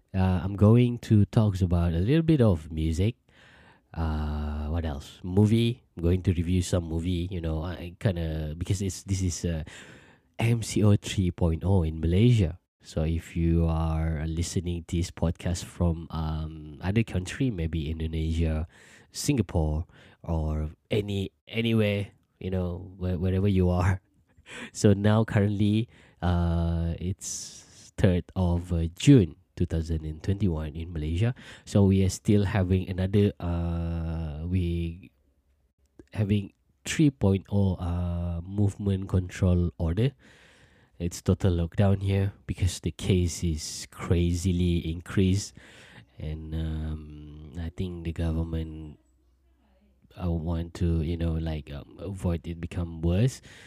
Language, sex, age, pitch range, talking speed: English, male, 20-39, 80-100 Hz, 125 wpm